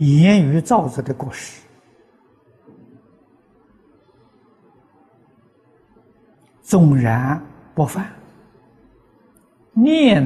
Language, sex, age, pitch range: Chinese, male, 60-79, 135-185 Hz